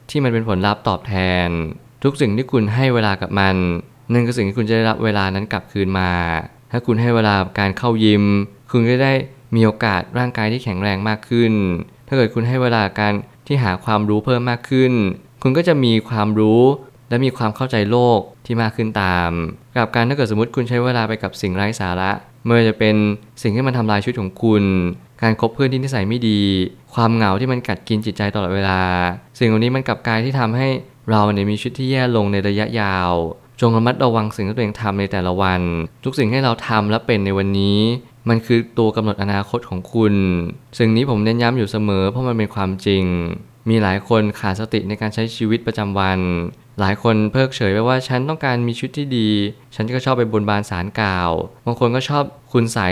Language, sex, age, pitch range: Thai, male, 20-39, 100-120 Hz